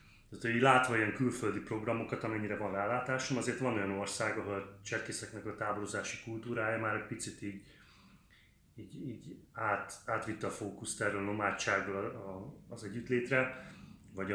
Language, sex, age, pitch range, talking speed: Hungarian, male, 30-49, 100-120 Hz, 150 wpm